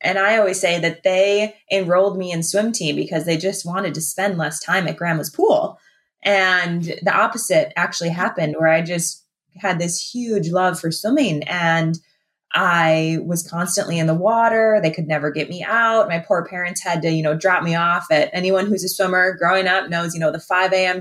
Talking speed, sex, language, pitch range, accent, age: 205 wpm, female, English, 170-200 Hz, American, 20-39